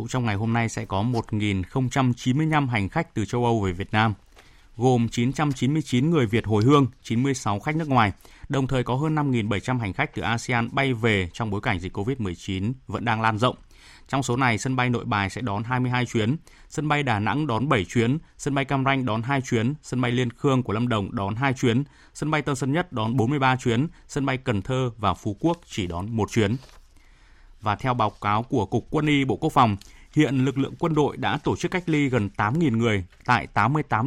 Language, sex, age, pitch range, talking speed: Vietnamese, male, 20-39, 110-140 Hz, 220 wpm